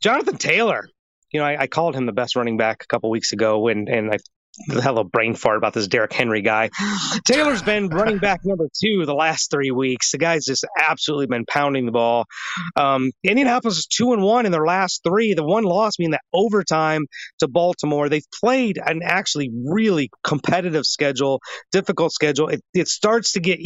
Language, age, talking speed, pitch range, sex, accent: English, 30-49, 200 wpm, 140-190 Hz, male, American